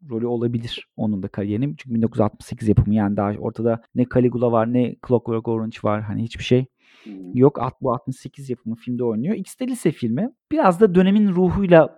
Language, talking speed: Turkish, 175 wpm